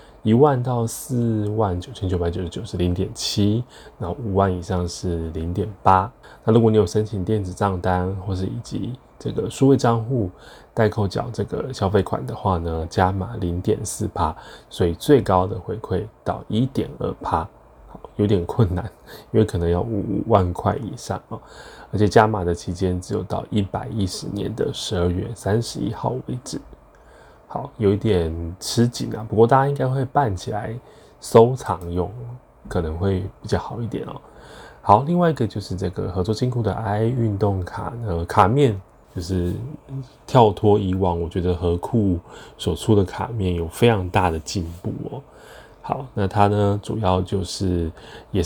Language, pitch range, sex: Chinese, 90-115 Hz, male